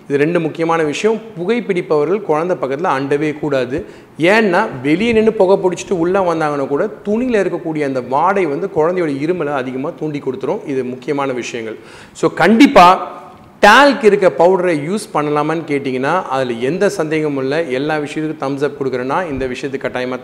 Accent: native